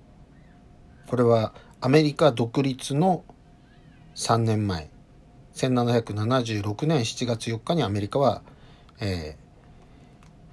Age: 50-69